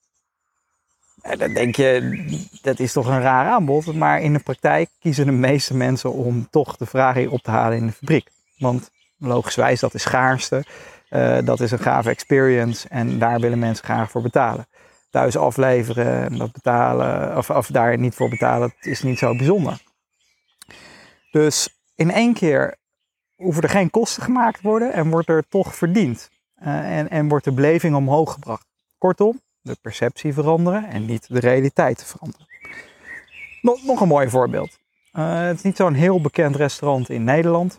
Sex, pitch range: male, 125-165 Hz